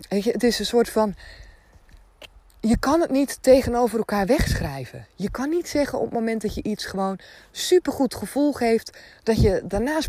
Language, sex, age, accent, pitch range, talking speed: Dutch, female, 20-39, Dutch, 170-235 Hz, 170 wpm